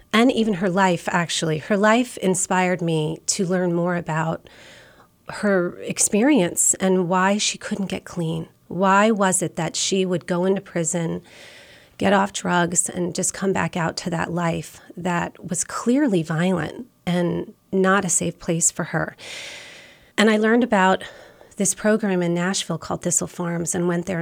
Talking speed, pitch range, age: 165 wpm, 175-200 Hz, 30-49